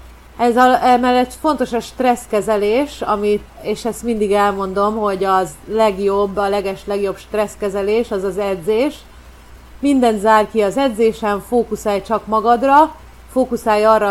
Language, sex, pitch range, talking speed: Hungarian, female, 195-225 Hz, 125 wpm